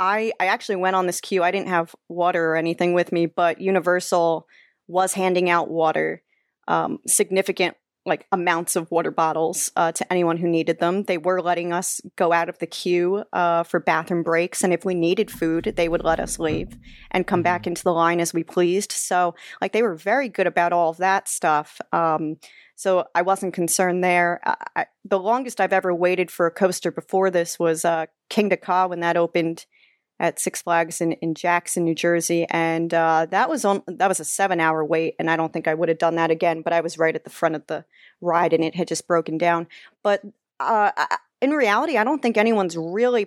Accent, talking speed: American, 210 wpm